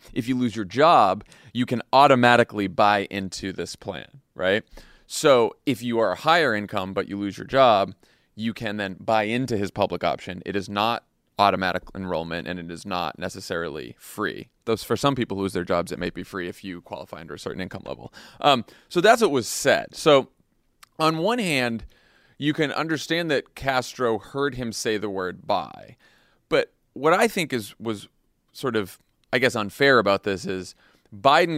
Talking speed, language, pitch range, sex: 190 wpm, English, 100-130 Hz, male